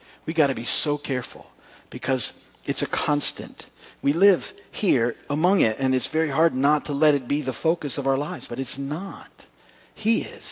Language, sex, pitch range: English, male, 130-175 Hz